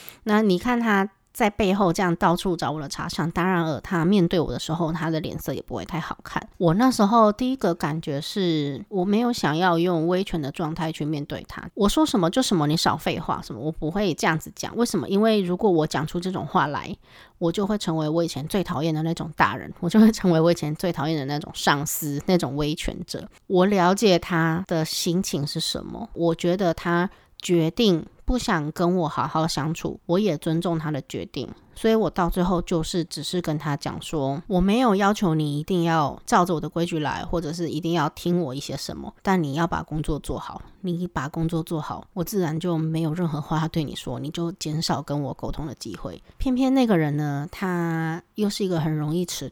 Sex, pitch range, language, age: female, 155-185 Hz, Chinese, 20-39